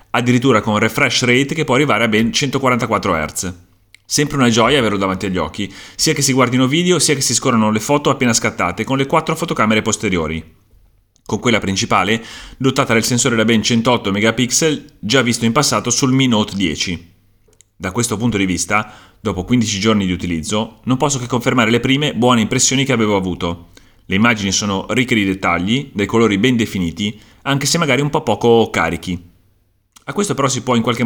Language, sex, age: Italian, male, 30-49